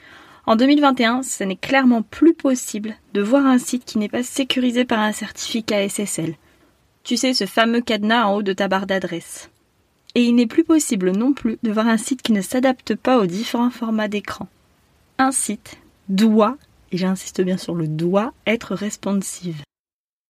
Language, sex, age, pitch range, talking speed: French, female, 20-39, 195-255 Hz, 175 wpm